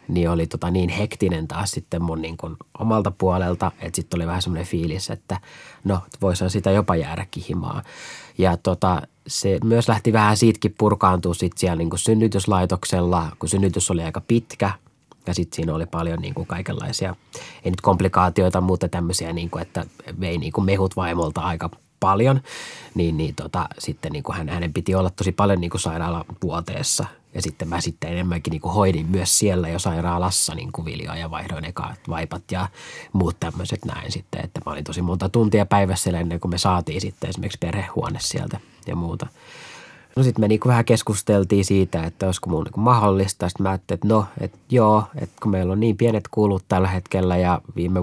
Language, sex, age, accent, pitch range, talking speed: Finnish, male, 20-39, native, 85-105 Hz, 180 wpm